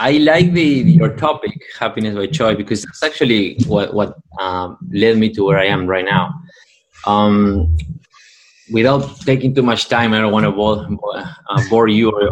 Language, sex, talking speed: English, male, 185 wpm